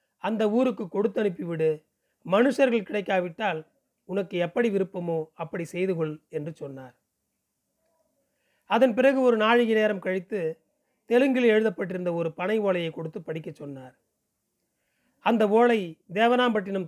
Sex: male